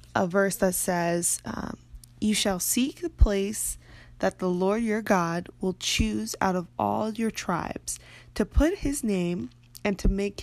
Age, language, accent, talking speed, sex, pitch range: 20-39, English, American, 165 wpm, female, 175-215 Hz